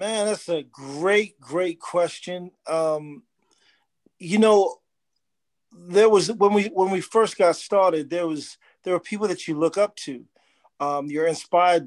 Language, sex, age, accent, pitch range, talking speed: English, male, 40-59, American, 160-195 Hz, 155 wpm